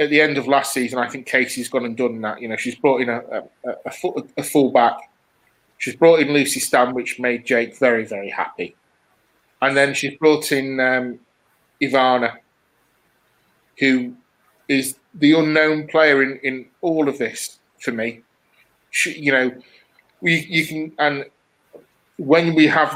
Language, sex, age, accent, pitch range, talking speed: English, male, 30-49, British, 125-150 Hz, 170 wpm